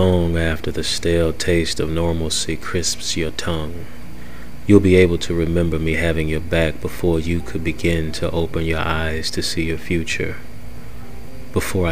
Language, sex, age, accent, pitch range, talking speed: English, male, 30-49, American, 80-90 Hz, 160 wpm